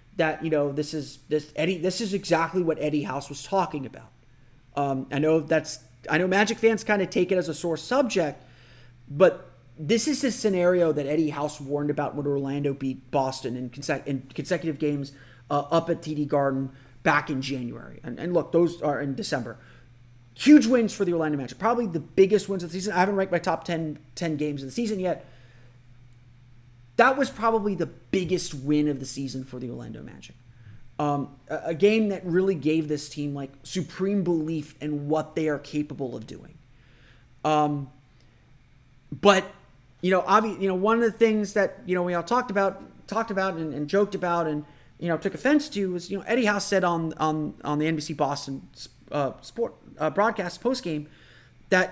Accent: American